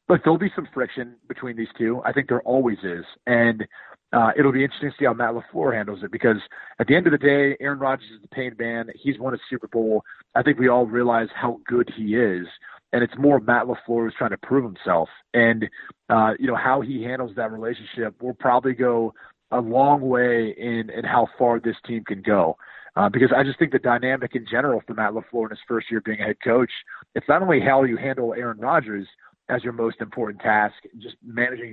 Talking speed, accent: 225 wpm, American